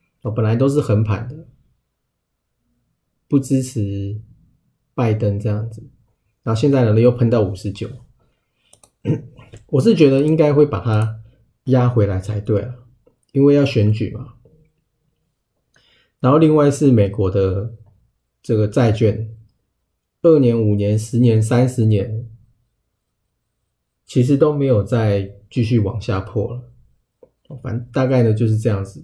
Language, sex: Chinese, male